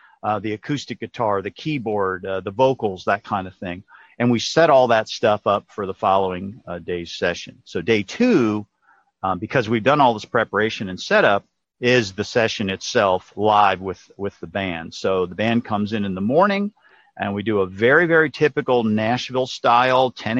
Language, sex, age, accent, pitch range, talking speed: English, male, 50-69, American, 105-130 Hz, 190 wpm